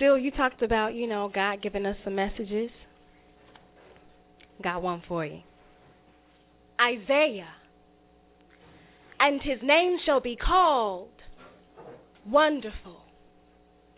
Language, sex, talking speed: English, female, 100 wpm